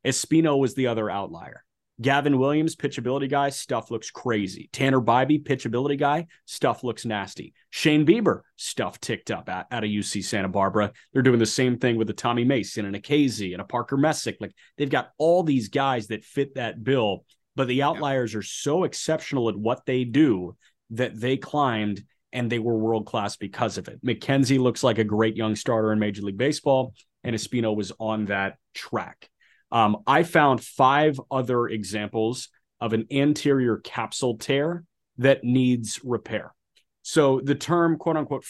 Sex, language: male, English